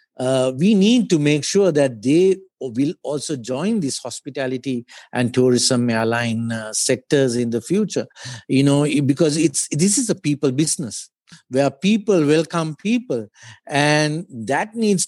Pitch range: 130-180 Hz